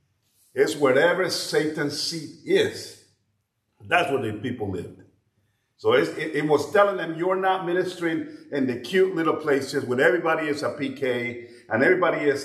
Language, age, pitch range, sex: English, 50-69, 145-235 Hz, male